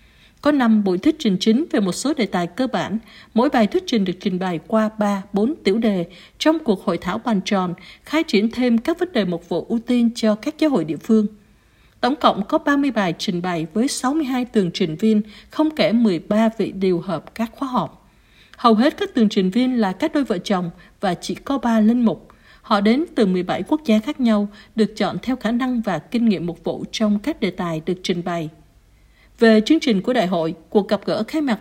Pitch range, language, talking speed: 200-255 Hz, Vietnamese, 230 wpm